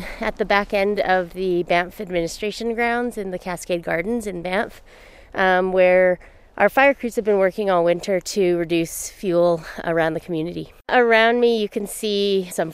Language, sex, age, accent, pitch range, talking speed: English, female, 30-49, American, 170-205 Hz, 175 wpm